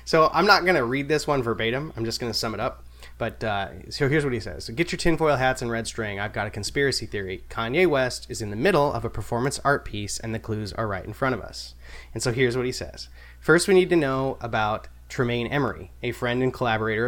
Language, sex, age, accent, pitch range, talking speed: English, male, 20-39, American, 100-130 Hz, 255 wpm